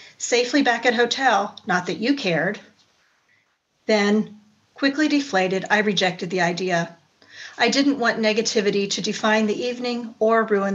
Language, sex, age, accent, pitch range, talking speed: English, female, 40-59, American, 180-230 Hz, 140 wpm